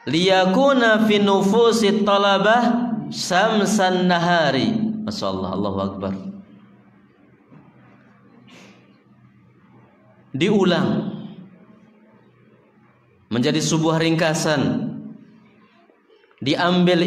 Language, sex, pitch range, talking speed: Malay, male, 155-210 Hz, 55 wpm